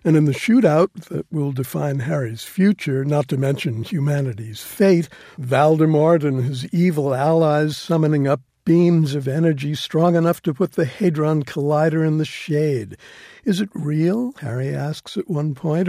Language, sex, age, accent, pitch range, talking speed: English, male, 60-79, American, 140-165 Hz, 160 wpm